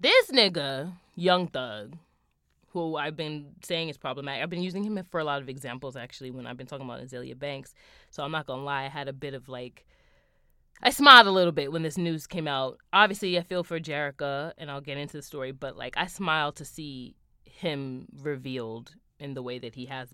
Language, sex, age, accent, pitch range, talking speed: English, female, 20-39, American, 130-165 Hz, 220 wpm